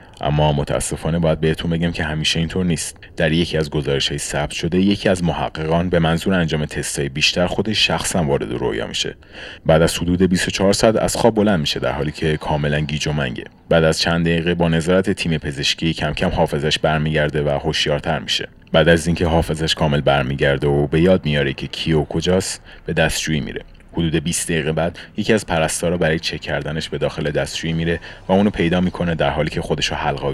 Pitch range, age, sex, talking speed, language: 75-85 Hz, 30-49, male, 195 wpm, Persian